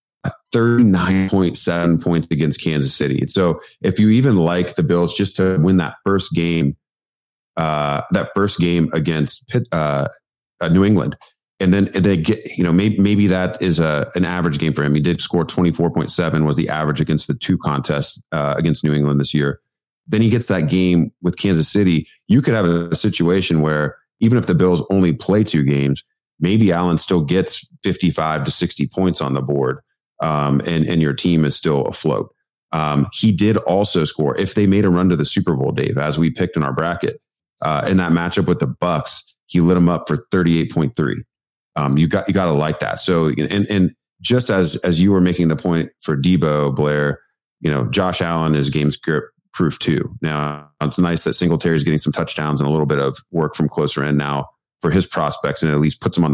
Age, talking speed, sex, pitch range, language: 30-49, 210 wpm, male, 75-95 Hz, English